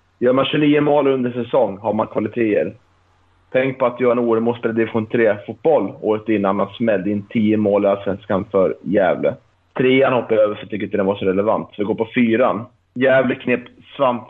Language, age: Swedish, 30-49